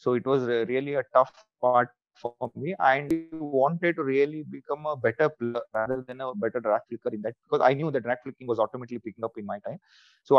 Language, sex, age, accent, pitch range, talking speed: English, male, 30-49, Indian, 120-135 Hz, 230 wpm